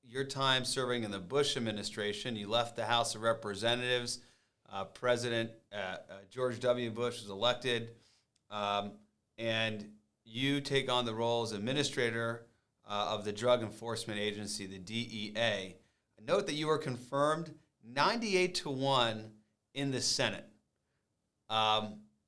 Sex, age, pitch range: male, 40-59, 105-135 Hz